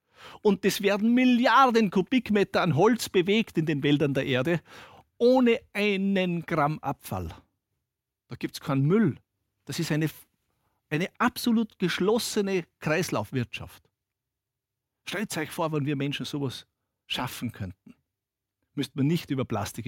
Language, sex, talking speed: German, male, 130 wpm